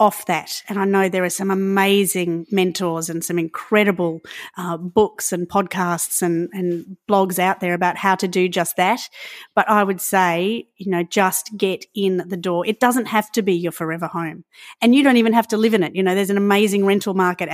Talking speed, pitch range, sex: 215 wpm, 180-215 Hz, female